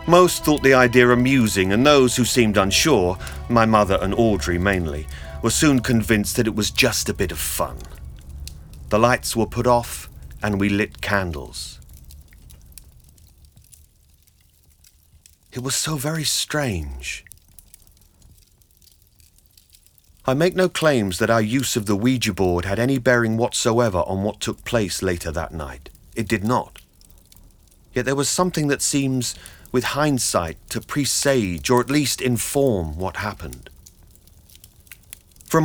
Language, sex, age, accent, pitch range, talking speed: English, male, 40-59, British, 85-120 Hz, 140 wpm